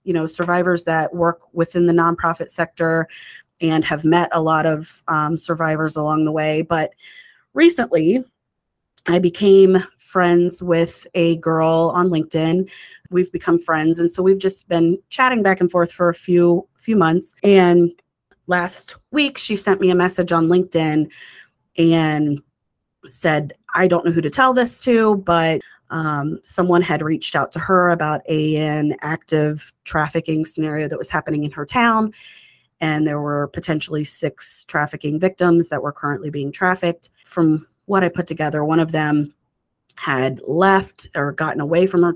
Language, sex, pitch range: English, female, 155-180 Hz